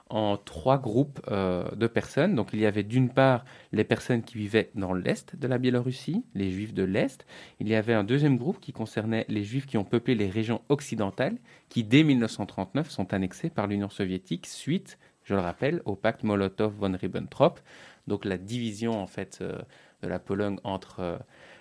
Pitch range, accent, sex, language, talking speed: 100-130 Hz, French, male, French, 190 wpm